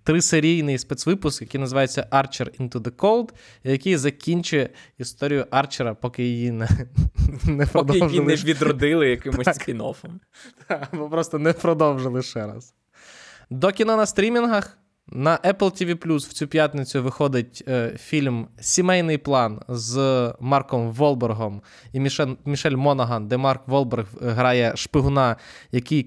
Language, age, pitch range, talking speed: Ukrainian, 20-39, 120-150 Hz, 120 wpm